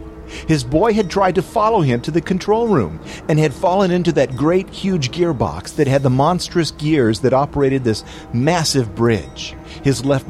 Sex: male